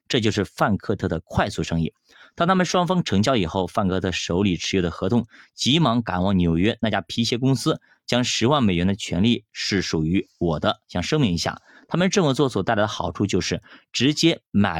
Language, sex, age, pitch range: Chinese, male, 30-49, 95-125 Hz